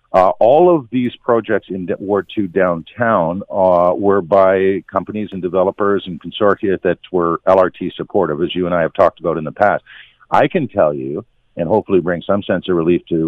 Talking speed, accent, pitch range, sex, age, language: 200 wpm, American, 90-110 Hz, male, 50-69, English